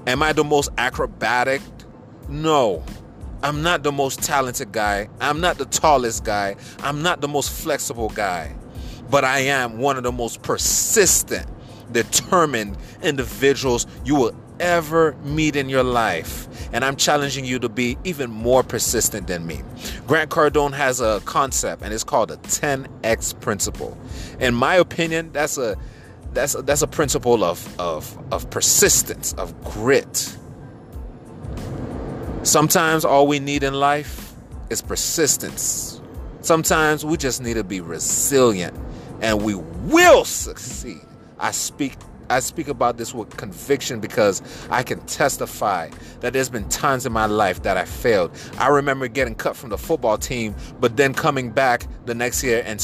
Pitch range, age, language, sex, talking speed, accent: 115-145 Hz, 30-49, English, male, 155 wpm, American